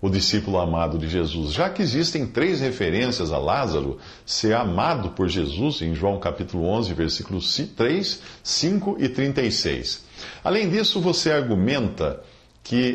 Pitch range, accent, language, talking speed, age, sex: 95-135 Hz, Brazilian, Portuguese, 140 wpm, 50-69, male